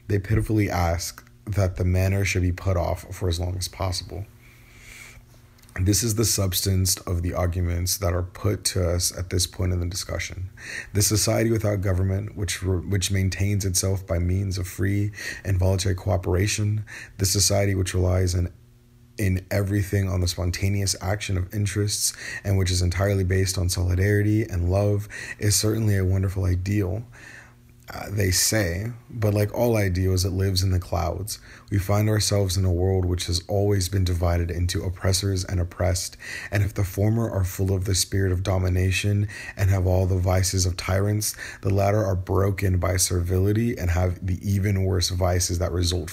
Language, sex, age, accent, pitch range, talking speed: English, male, 30-49, American, 90-105 Hz, 175 wpm